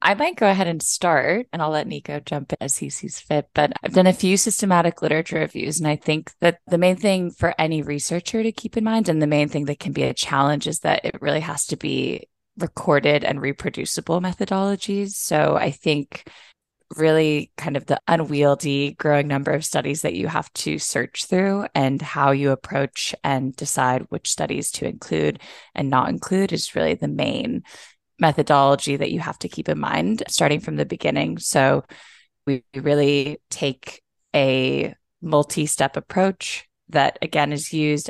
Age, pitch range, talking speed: 20-39, 140-175 Hz, 185 wpm